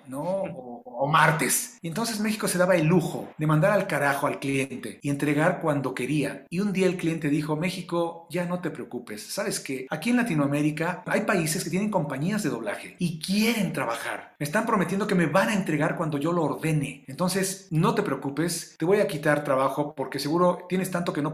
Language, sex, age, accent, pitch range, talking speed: Spanish, male, 40-59, Mexican, 145-195 Hz, 210 wpm